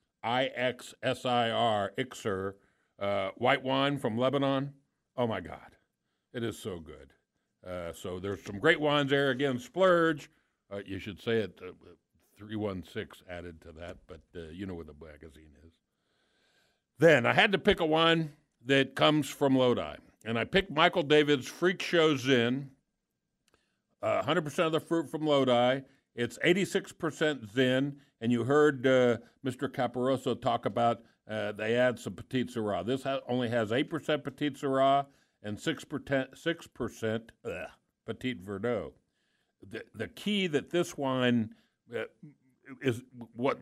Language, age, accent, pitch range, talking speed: English, 50-69, American, 115-145 Hz, 145 wpm